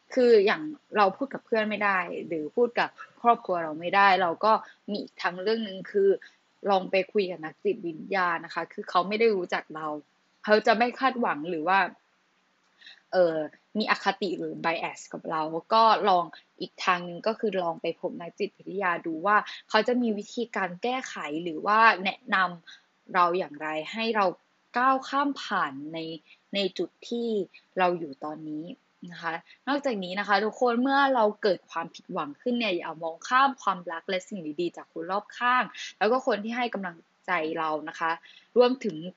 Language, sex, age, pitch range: Thai, female, 10-29, 170-230 Hz